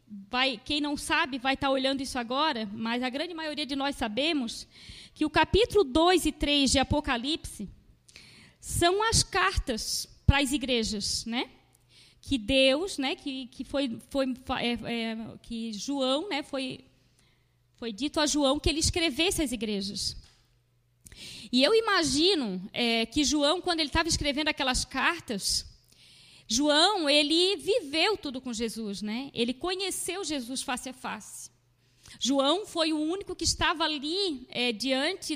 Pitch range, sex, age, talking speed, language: 230-320 Hz, female, 20-39, 140 wpm, Portuguese